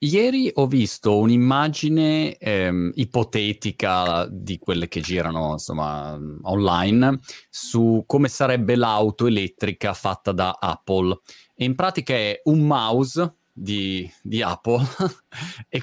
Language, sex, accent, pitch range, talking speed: Italian, male, native, 100-125 Hz, 115 wpm